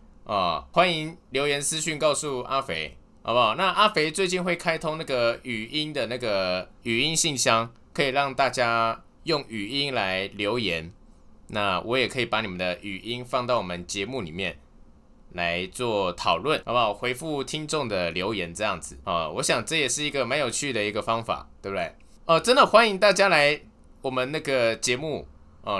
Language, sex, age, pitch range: Chinese, male, 20-39, 95-155 Hz